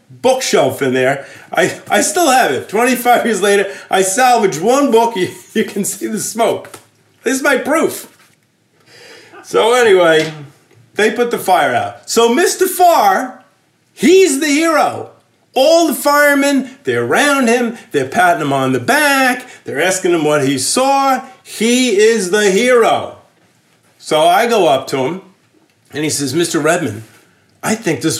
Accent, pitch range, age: American, 170-265 Hz, 40-59